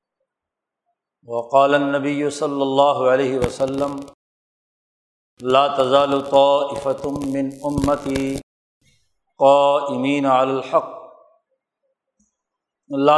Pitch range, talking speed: 135-145 Hz, 70 wpm